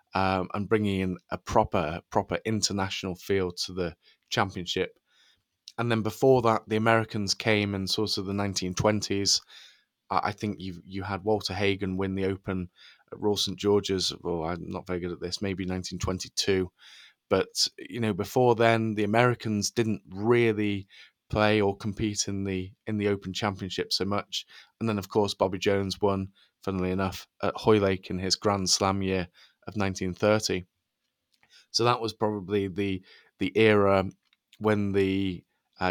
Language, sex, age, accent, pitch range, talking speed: English, male, 20-39, British, 95-110 Hz, 165 wpm